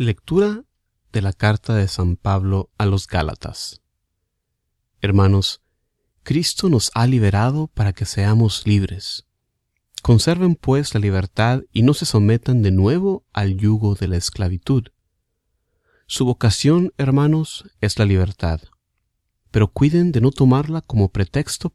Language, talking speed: Spanish, 130 wpm